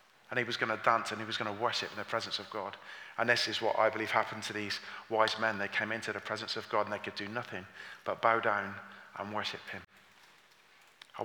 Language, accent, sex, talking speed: English, British, male, 250 wpm